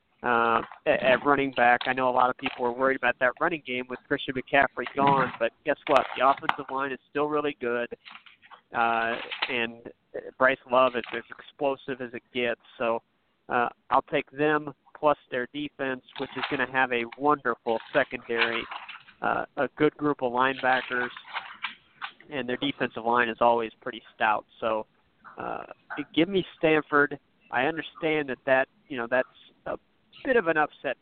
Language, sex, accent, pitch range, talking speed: English, male, American, 120-145 Hz, 165 wpm